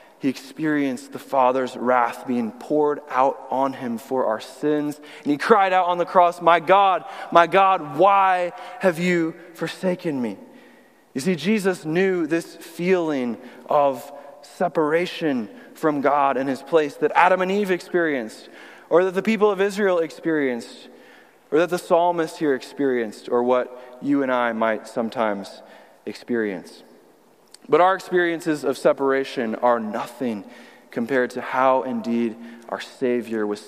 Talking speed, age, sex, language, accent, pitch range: 145 wpm, 20-39, male, English, American, 145-215 Hz